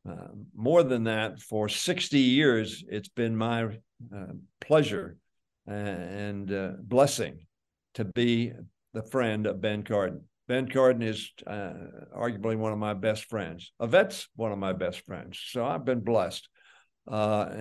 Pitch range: 100-120 Hz